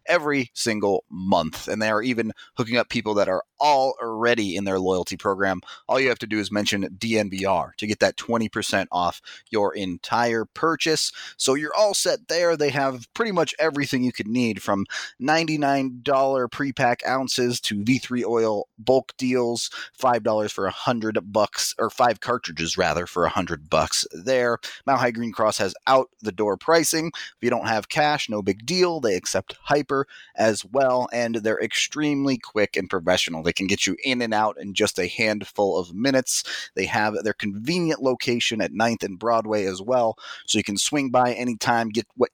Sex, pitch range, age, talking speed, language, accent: male, 105-135 Hz, 30-49, 180 wpm, English, American